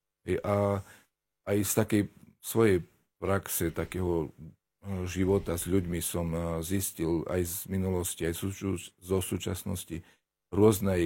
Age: 40-59